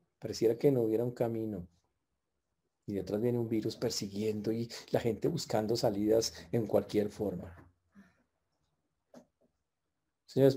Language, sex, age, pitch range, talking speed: Spanish, male, 40-59, 95-125 Hz, 120 wpm